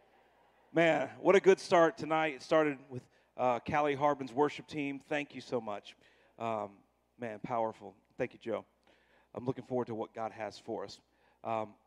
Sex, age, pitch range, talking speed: male, 40-59, 90-130 Hz, 170 wpm